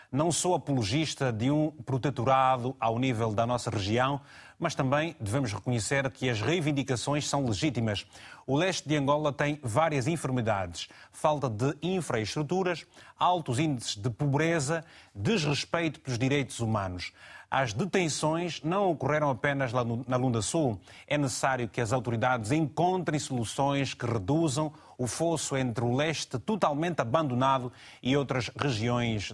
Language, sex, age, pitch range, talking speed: Portuguese, male, 30-49, 120-150 Hz, 135 wpm